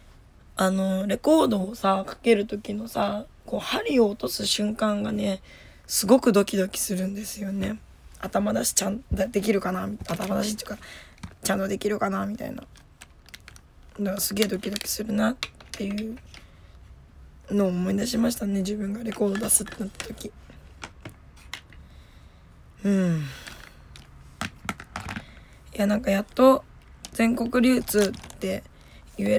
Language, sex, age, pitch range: Japanese, female, 20-39, 180-215 Hz